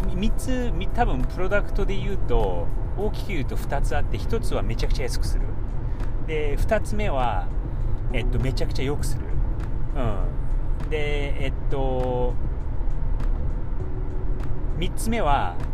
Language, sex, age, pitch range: Japanese, male, 40-59, 100-115 Hz